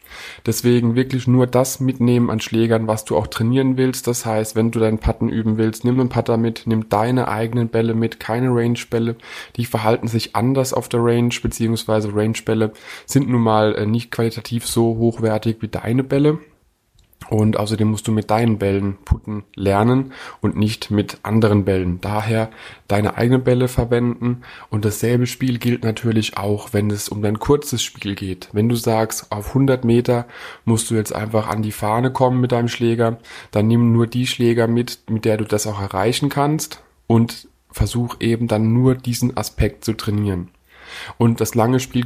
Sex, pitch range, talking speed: male, 110-125 Hz, 180 wpm